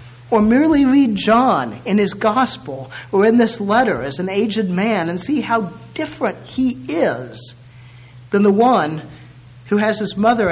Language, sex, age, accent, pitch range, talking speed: English, male, 50-69, American, 125-200 Hz, 160 wpm